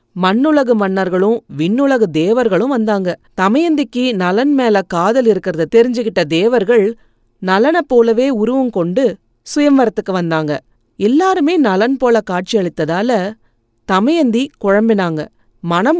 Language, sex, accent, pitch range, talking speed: Tamil, female, native, 170-250 Hz, 95 wpm